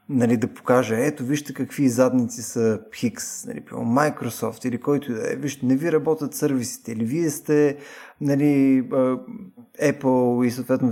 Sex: male